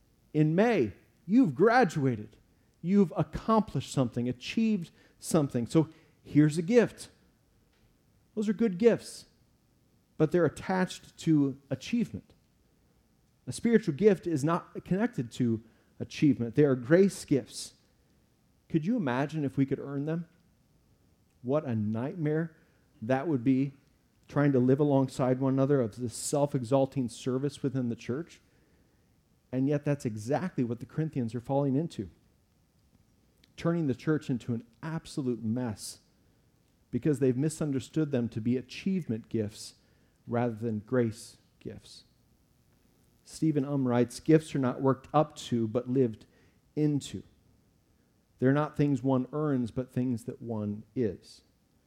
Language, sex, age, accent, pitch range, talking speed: English, male, 40-59, American, 120-155 Hz, 130 wpm